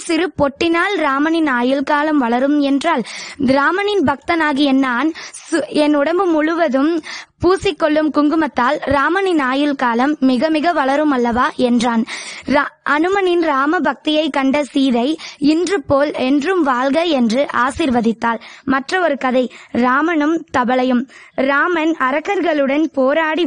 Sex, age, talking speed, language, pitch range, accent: female, 20-39, 100 wpm, Tamil, 265-320 Hz, native